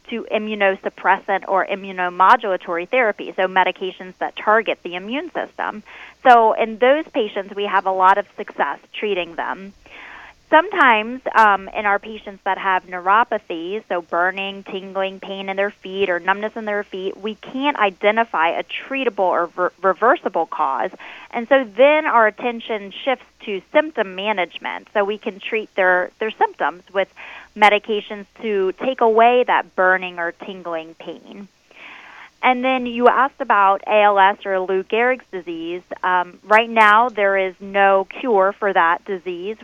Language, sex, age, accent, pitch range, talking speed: English, female, 20-39, American, 185-225 Hz, 150 wpm